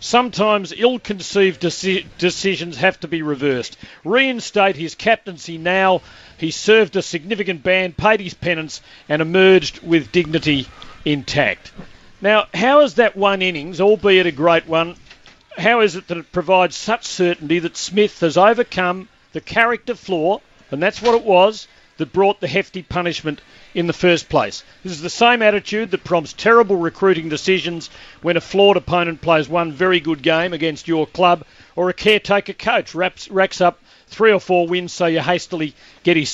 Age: 50-69